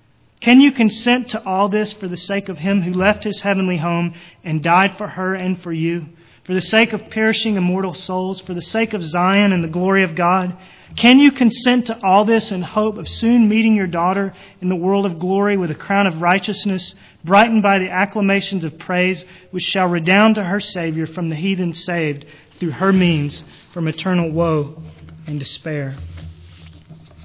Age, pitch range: 30-49, 155-200 Hz